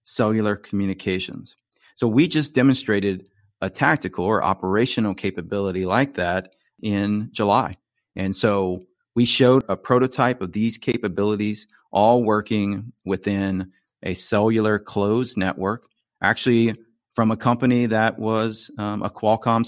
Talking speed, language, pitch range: 120 wpm, English, 95-115 Hz